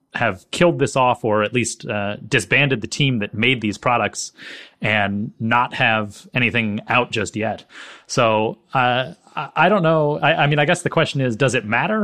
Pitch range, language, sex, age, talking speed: 105-130 Hz, English, male, 30-49, 190 wpm